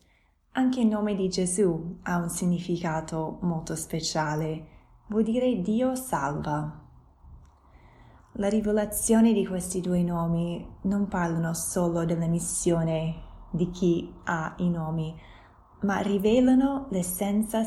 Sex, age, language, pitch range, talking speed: female, 20-39, Italian, 150-210 Hz, 110 wpm